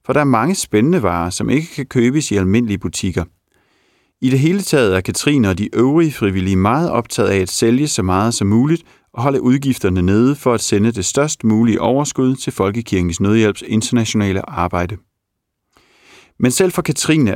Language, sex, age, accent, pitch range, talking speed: Danish, male, 40-59, native, 95-130 Hz, 180 wpm